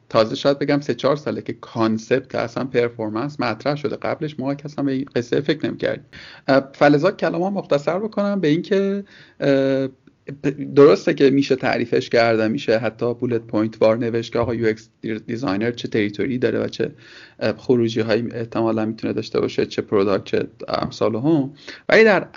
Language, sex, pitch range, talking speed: Persian, male, 110-140 Hz, 165 wpm